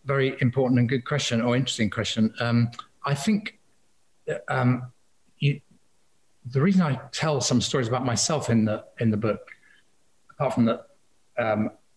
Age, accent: 40-59, British